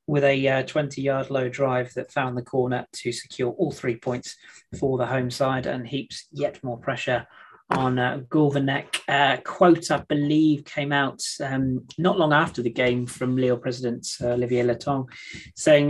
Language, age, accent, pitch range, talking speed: English, 30-49, British, 130-175 Hz, 175 wpm